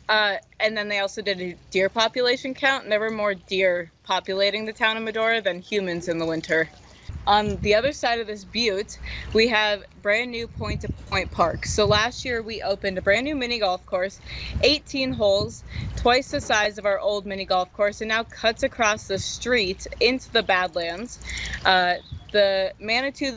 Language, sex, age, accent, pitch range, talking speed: English, female, 20-39, American, 190-230 Hz, 180 wpm